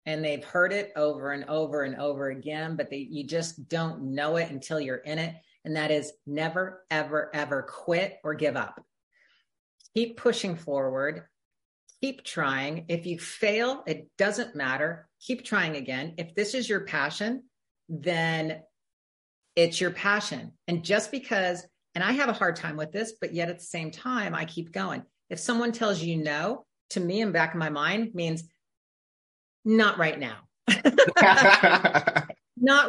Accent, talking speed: American, 165 wpm